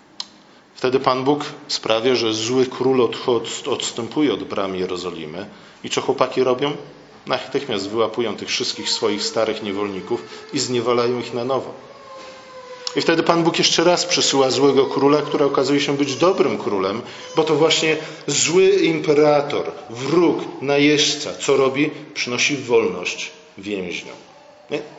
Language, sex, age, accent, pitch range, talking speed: Polish, male, 40-59, native, 130-175 Hz, 130 wpm